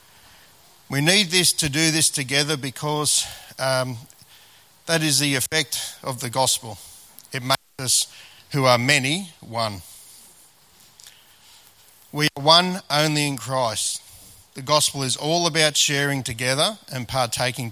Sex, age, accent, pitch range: male, 50-69, Australian, 120-150 Hz